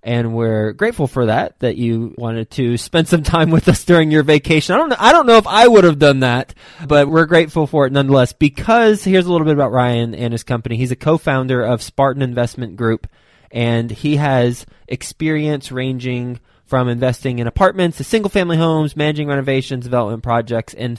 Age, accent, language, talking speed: 20-39, American, English, 200 wpm